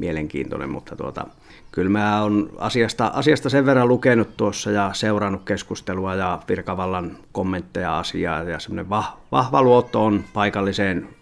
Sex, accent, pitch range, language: male, native, 90-110 Hz, Finnish